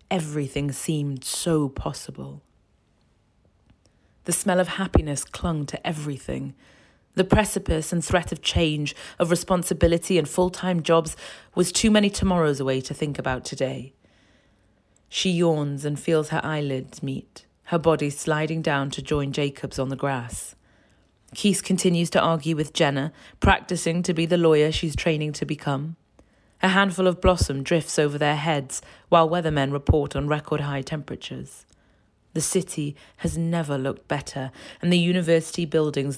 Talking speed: 150 wpm